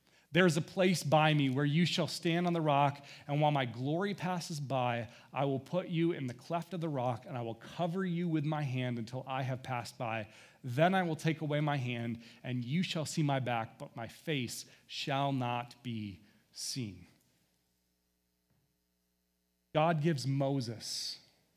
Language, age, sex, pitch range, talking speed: English, 30-49, male, 125-185 Hz, 180 wpm